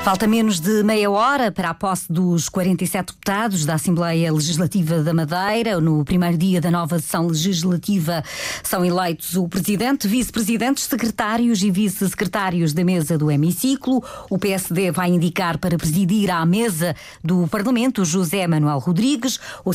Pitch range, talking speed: 170-215 Hz, 150 wpm